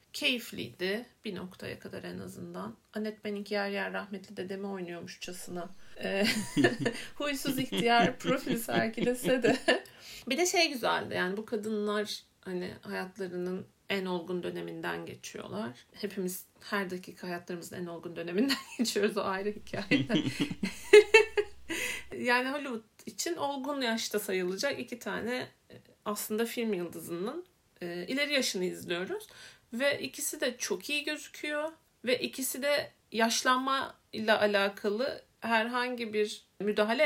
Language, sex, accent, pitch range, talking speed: Turkish, female, native, 195-255 Hz, 115 wpm